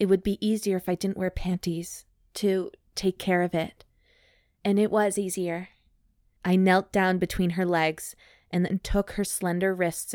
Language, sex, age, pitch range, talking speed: English, female, 20-39, 165-190 Hz, 175 wpm